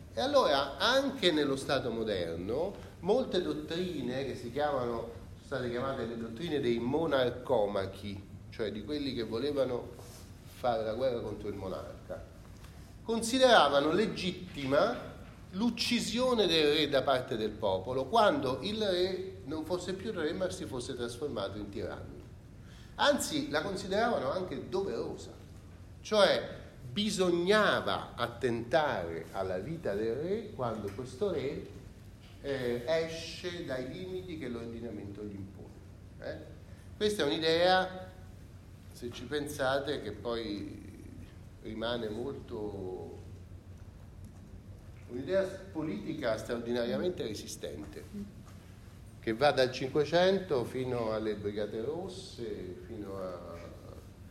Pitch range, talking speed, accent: 100-155 Hz, 110 wpm, native